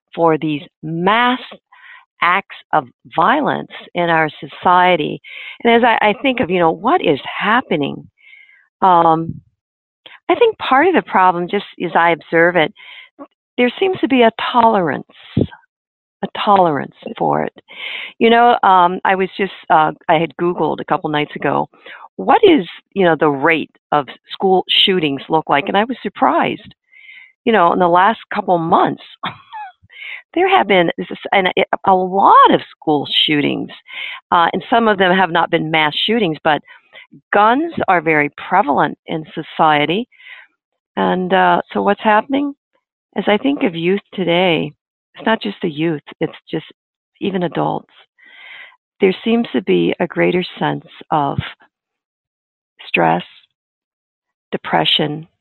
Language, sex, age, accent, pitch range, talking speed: English, female, 50-69, American, 165-255 Hz, 145 wpm